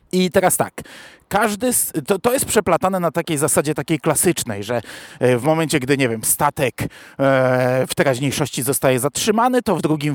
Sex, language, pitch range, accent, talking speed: male, Polish, 130-180 Hz, native, 160 wpm